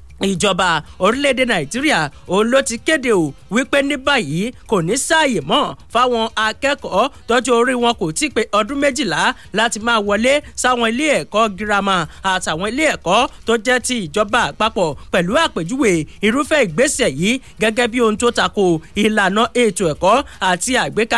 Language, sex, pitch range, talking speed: English, male, 190-245 Hz, 165 wpm